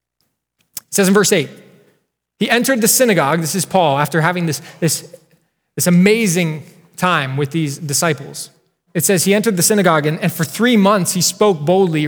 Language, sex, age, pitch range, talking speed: English, male, 20-39, 150-185 Hz, 175 wpm